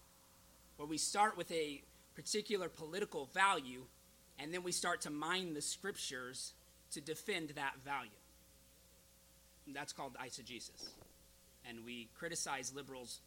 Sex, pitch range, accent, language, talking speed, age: male, 120-160 Hz, American, English, 120 wpm, 30-49